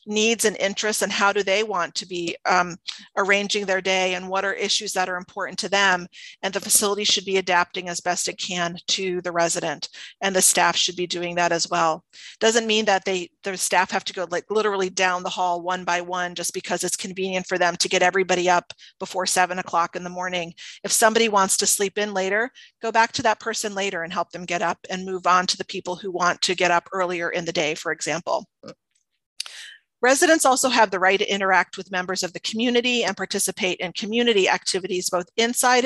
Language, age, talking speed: English, 40-59, 220 wpm